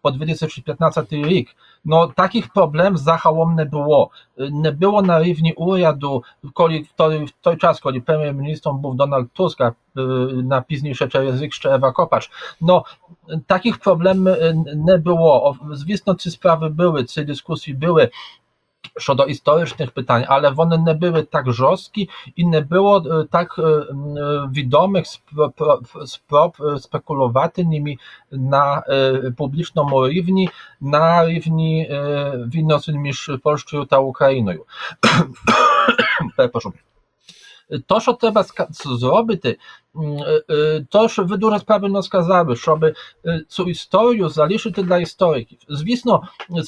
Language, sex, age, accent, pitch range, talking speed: Ukrainian, male, 40-59, Polish, 145-185 Hz, 115 wpm